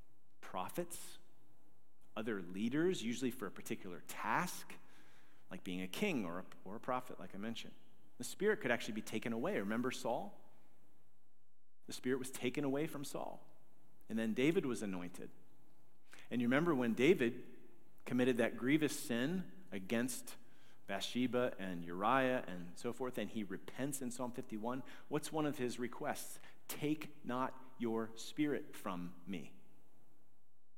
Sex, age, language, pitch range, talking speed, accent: male, 40-59, English, 115-150 Hz, 140 wpm, American